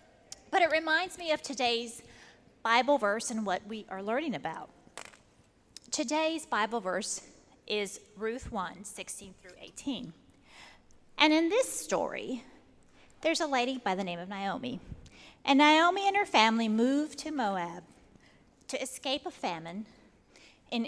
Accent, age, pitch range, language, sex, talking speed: American, 30-49, 225-315 Hz, English, female, 140 wpm